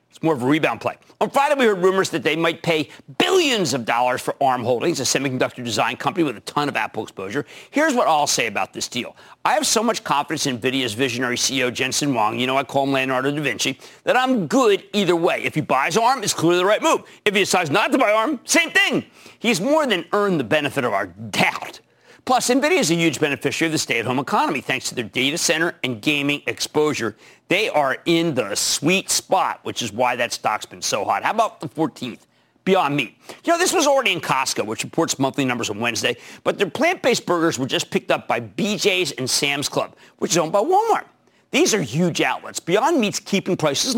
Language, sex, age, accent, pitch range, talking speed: English, male, 50-69, American, 135-205 Hz, 225 wpm